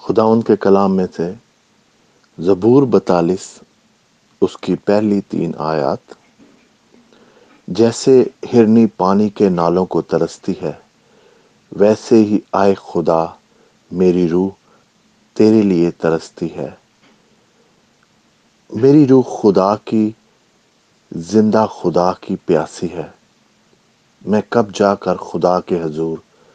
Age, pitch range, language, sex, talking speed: 50-69, 90-115 Hz, English, male, 100 wpm